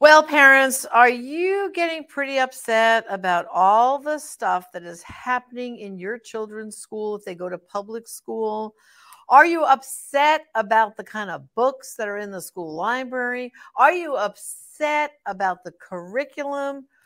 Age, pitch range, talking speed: 60-79, 195-280 Hz, 155 wpm